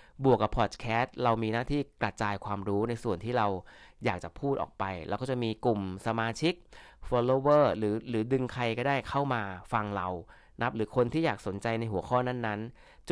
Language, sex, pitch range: Thai, male, 105-135 Hz